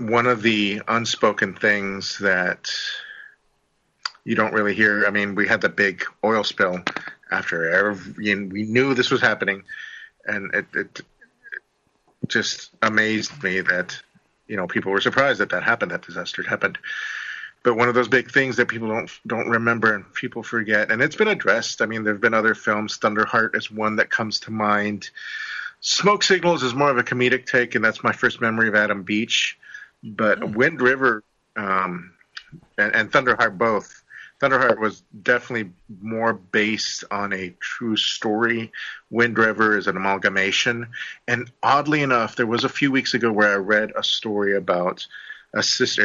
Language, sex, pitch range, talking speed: English, male, 105-125 Hz, 165 wpm